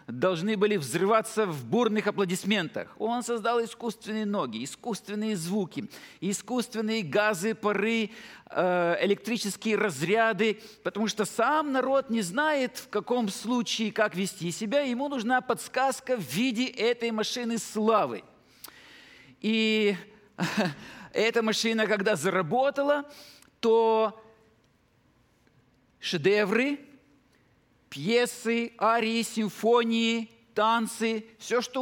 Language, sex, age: Russian, male, 50-69